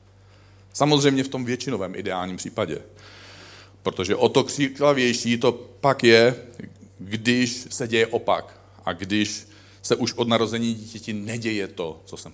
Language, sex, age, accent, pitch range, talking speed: Czech, male, 40-59, native, 95-125 Hz, 135 wpm